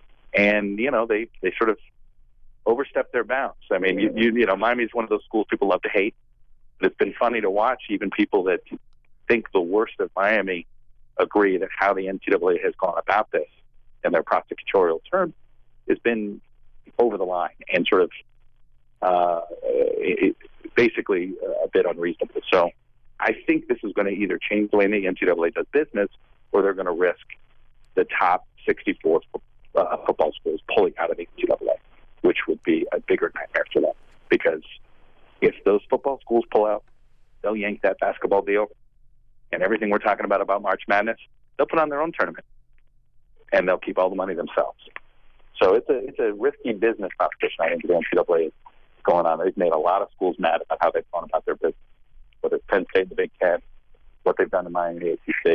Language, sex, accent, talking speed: English, male, American, 200 wpm